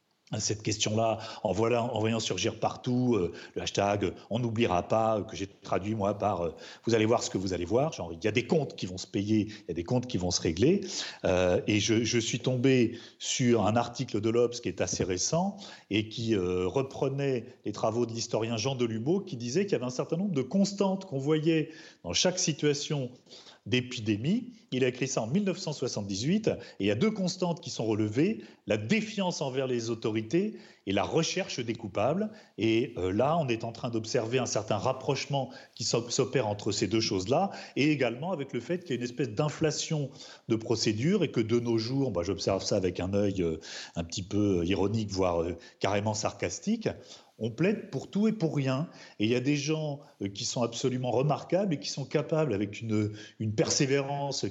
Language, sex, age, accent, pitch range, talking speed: French, male, 40-59, French, 110-150 Hz, 210 wpm